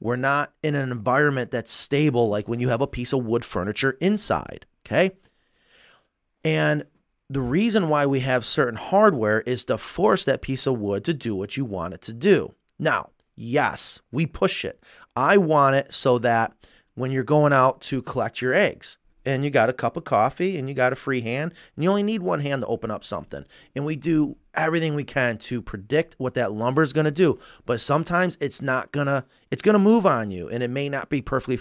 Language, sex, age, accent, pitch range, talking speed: English, male, 30-49, American, 120-150 Hz, 220 wpm